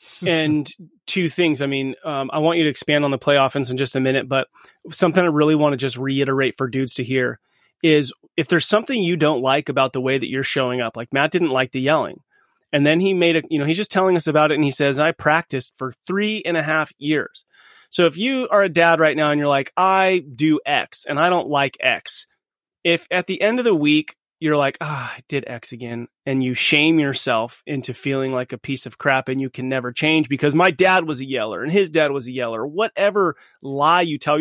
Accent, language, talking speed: American, English, 240 wpm